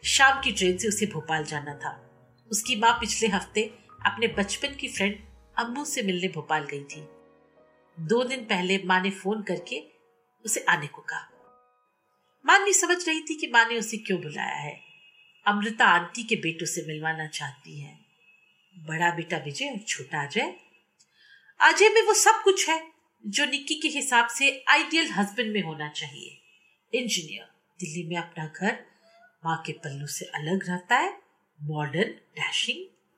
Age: 50-69